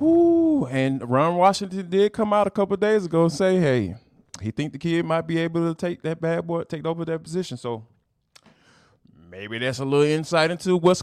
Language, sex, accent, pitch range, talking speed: English, male, American, 125-200 Hz, 205 wpm